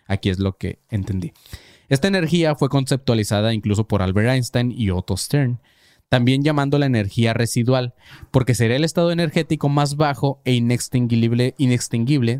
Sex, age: male, 20-39